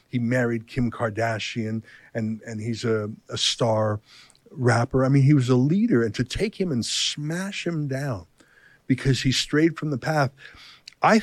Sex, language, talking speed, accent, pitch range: male, English, 170 wpm, American, 120-155 Hz